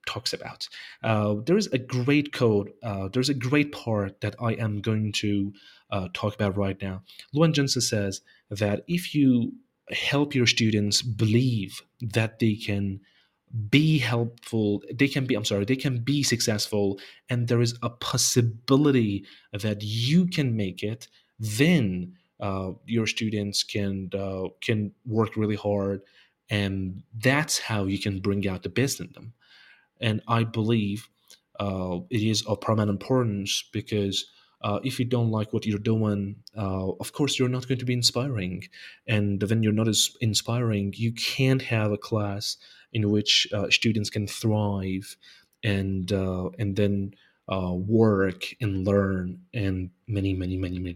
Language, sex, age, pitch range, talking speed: English, male, 30-49, 100-120 Hz, 160 wpm